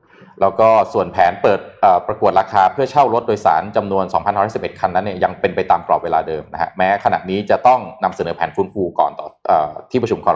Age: 20-39